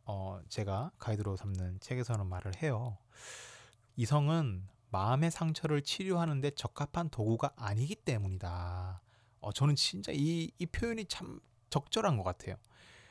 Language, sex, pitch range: Korean, male, 110-150 Hz